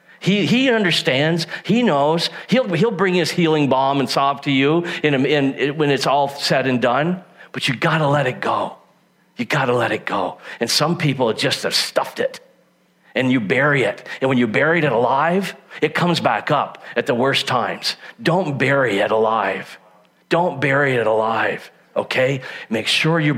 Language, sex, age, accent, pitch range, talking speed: English, male, 40-59, American, 110-165 Hz, 190 wpm